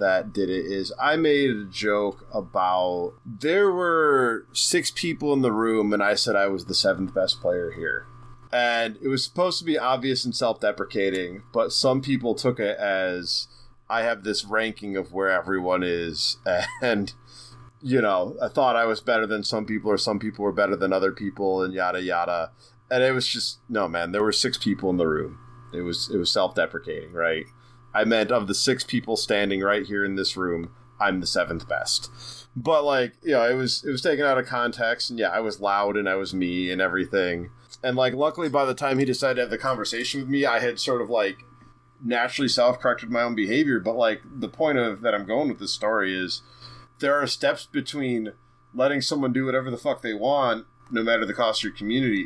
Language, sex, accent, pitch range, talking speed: English, male, American, 95-130 Hz, 210 wpm